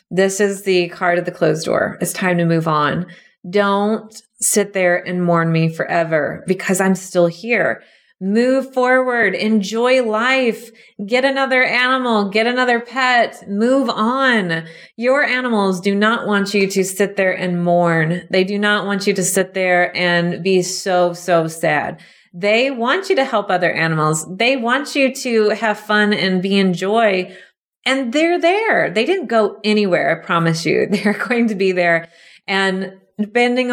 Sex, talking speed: female, 165 wpm